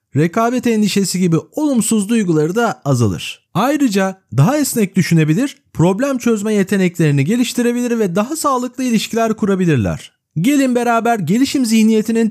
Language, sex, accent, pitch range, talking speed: Turkish, male, native, 165-240 Hz, 115 wpm